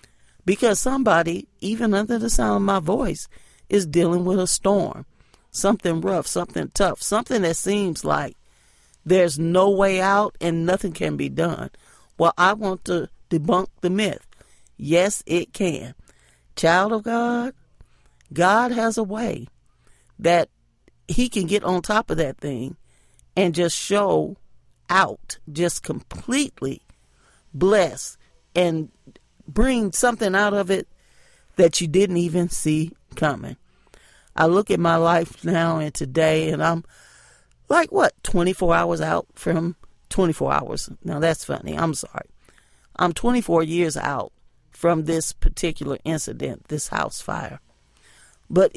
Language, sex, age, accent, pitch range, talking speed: English, male, 40-59, American, 160-200 Hz, 135 wpm